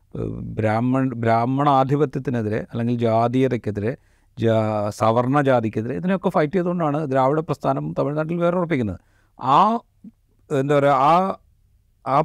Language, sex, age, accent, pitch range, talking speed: Malayalam, male, 40-59, native, 110-135 Hz, 90 wpm